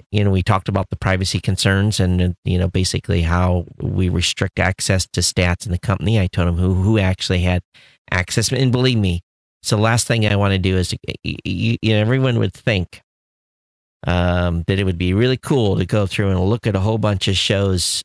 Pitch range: 90-115 Hz